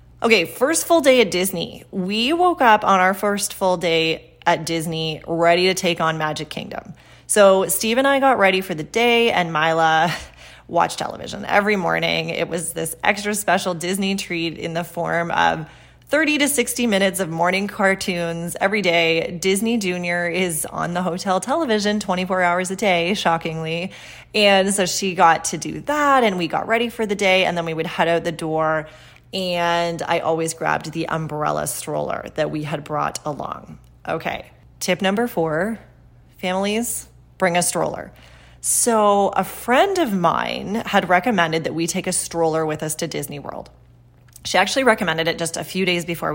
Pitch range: 165-200 Hz